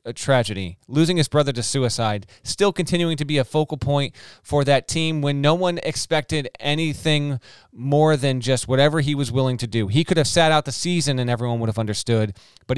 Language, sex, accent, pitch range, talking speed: English, male, American, 120-150 Hz, 205 wpm